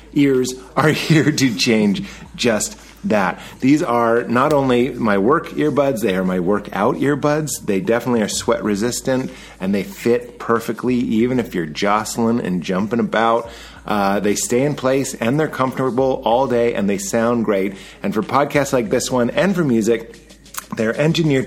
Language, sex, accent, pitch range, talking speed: English, male, American, 110-140 Hz, 170 wpm